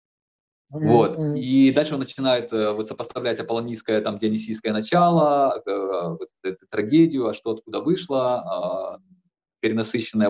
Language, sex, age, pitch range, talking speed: Ukrainian, male, 20-39, 110-150 Hz, 130 wpm